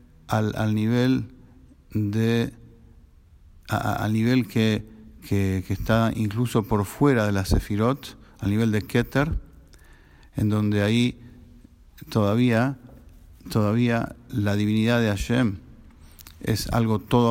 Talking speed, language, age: 120 wpm, English, 50-69